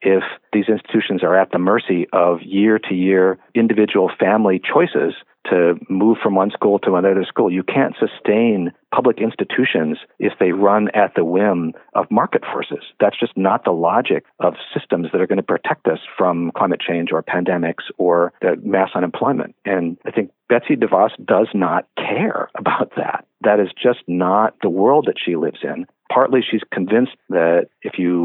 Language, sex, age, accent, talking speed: English, male, 50-69, American, 170 wpm